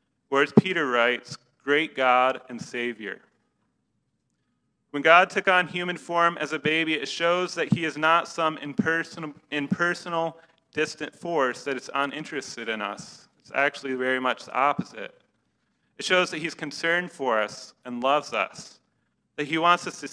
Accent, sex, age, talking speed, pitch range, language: American, male, 30-49, 160 wpm, 130-165 Hz, English